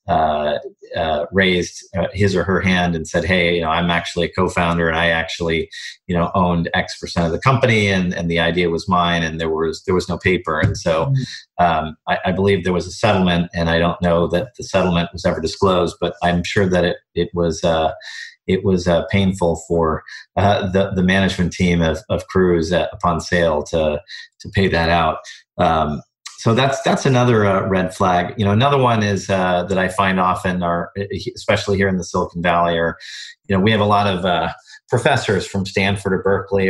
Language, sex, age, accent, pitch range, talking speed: English, male, 40-59, American, 85-100 Hz, 210 wpm